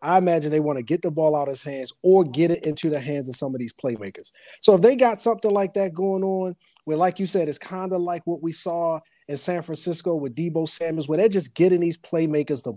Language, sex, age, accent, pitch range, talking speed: English, male, 30-49, American, 140-175 Hz, 265 wpm